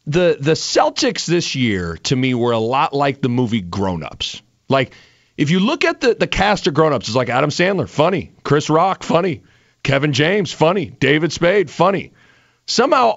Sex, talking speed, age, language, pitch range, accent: male, 185 wpm, 40-59, English, 155-220 Hz, American